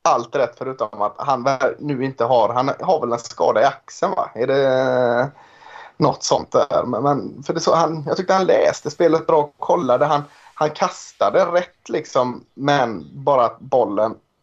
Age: 30-49